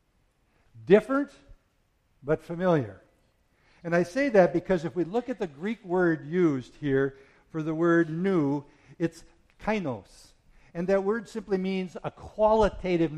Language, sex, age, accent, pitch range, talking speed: English, male, 60-79, American, 140-195 Hz, 135 wpm